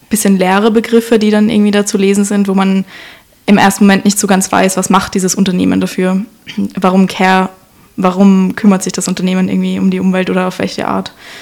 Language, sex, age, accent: German, female, 20-39, German